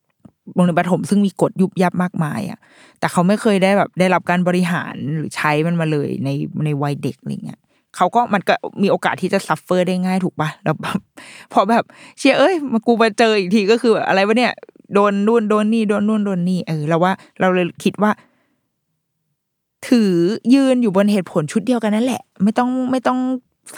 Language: Thai